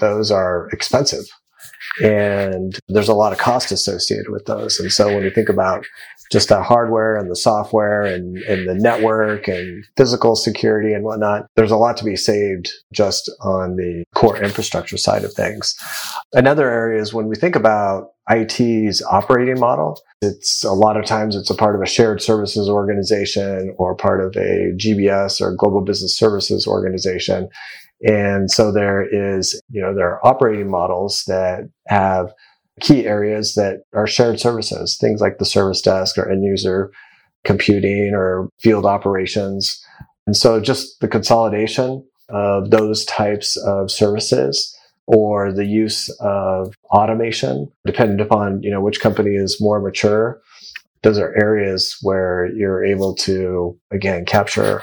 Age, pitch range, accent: 30-49, 95-110 Hz, American